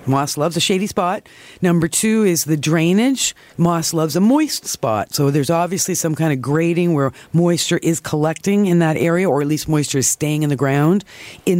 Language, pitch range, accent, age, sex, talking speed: English, 145-180 Hz, American, 50-69, female, 200 wpm